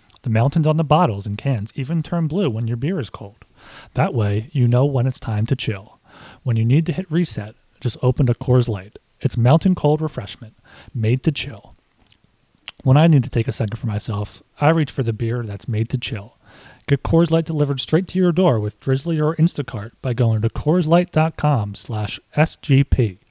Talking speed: 200 wpm